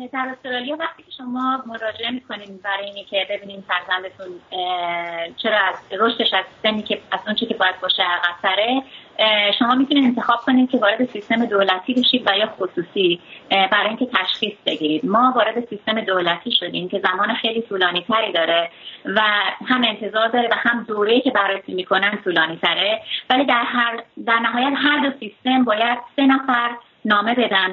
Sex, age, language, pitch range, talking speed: female, 30-49, Persian, 195-245 Hz, 155 wpm